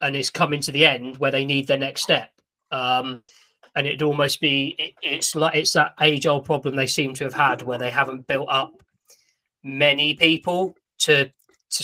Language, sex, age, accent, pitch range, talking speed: English, male, 20-39, British, 130-150 Hz, 200 wpm